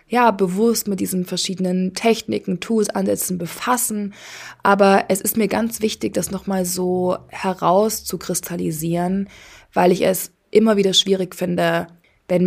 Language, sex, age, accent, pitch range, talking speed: German, female, 20-39, German, 175-200 Hz, 140 wpm